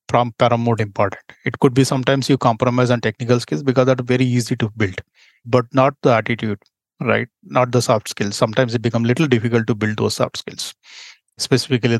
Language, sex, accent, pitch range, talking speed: English, male, Indian, 115-140 Hz, 200 wpm